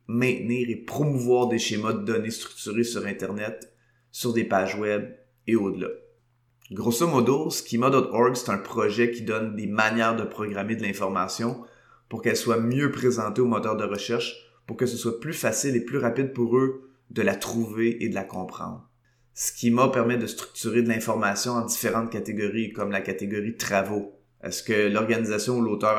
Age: 20-39